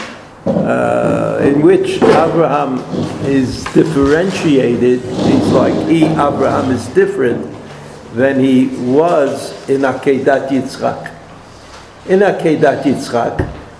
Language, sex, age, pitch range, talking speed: English, male, 60-79, 120-145 Hz, 90 wpm